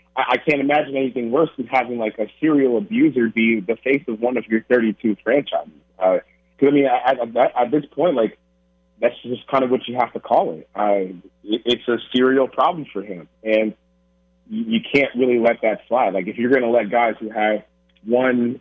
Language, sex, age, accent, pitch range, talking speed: English, male, 30-49, American, 100-130 Hz, 210 wpm